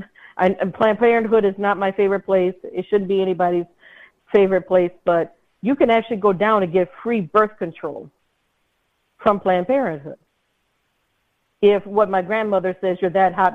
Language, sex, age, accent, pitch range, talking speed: English, female, 50-69, American, 185-230 Hz, 155 wpm